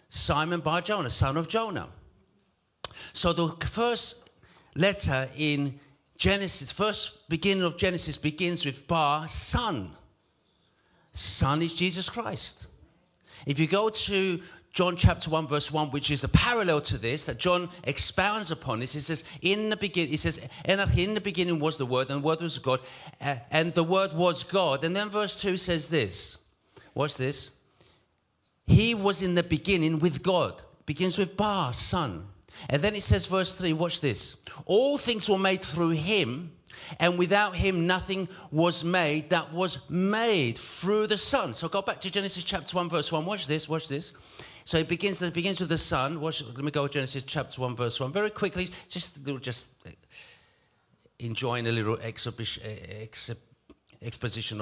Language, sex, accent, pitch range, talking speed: English, male, British, 135-185 Hz, 165 wpm